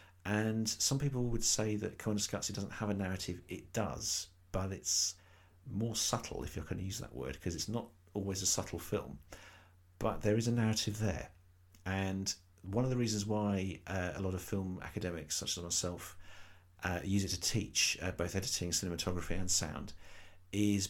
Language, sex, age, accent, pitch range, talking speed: English, male, 50-69, British, 90-105 Hz, 185 wpm